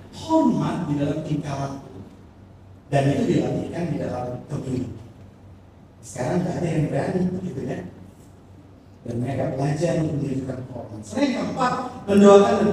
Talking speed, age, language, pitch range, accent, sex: 125 wpm, 40-59, English, 105-170 Hz, Indonesian, male